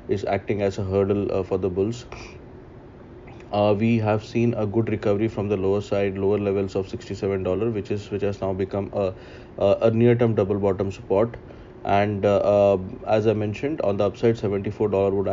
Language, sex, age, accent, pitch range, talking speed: English, male, 20-39, Indian, 95-115 Hz, 195 wpm